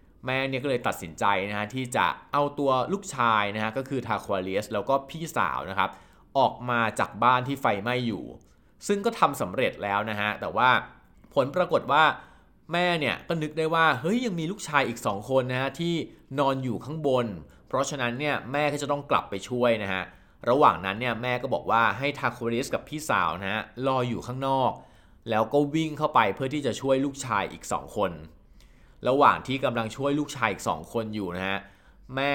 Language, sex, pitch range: Thai, male, 110-145 Hz